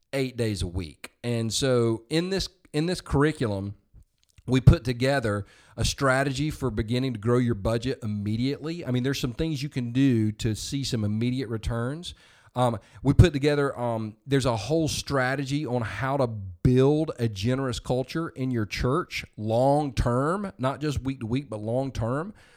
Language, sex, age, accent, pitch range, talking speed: English, male, 40-59, American, 115-145 Hz, 170 wpm